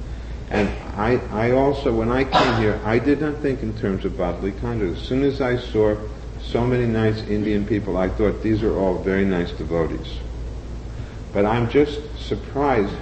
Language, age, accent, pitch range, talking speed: English, 50-69, American, 95-120 Hz, 180 wpm